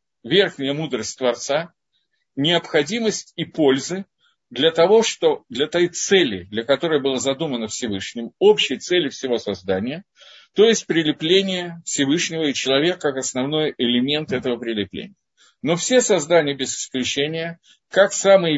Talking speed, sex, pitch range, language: 125 wpm, male, 120-170 Hz, Russian